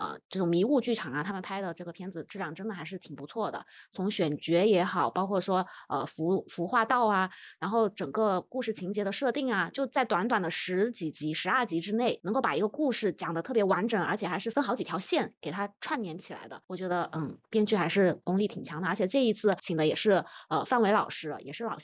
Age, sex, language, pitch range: 20-39, female, Chinese, 170-220 Hz